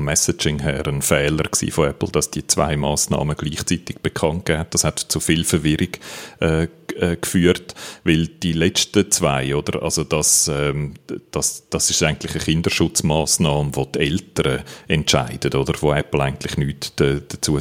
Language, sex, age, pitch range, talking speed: German, male, 40-59, 70-85 Hz, 155 wpm